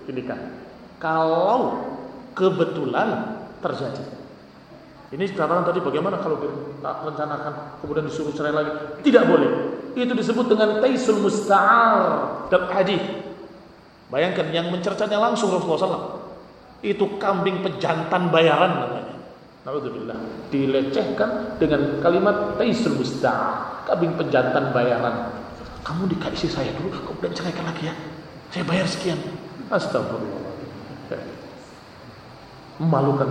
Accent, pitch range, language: native, 145-195 Hz, Indonesian